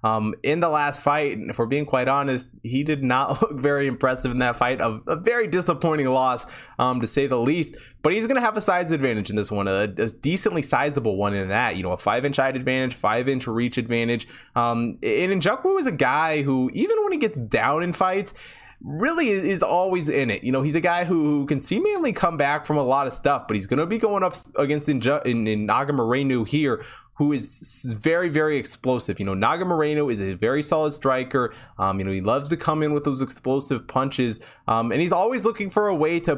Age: 20-39